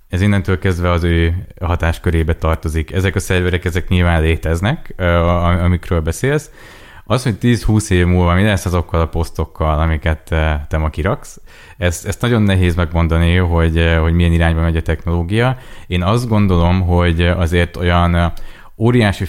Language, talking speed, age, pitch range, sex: Hungarian, 150 wpm, 20-39, 80-95 Hz, male